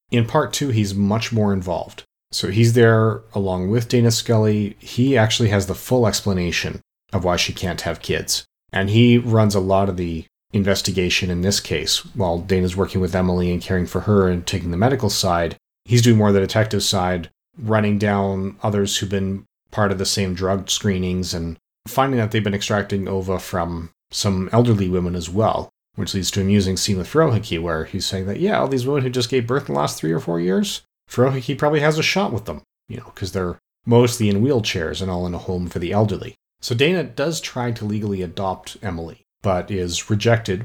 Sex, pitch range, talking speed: male, 95-115 Hz, 210 wpm